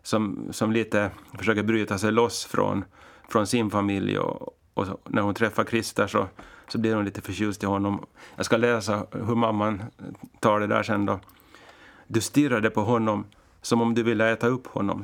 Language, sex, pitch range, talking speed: Swedish, male, 105-115 Hz, 190 wpm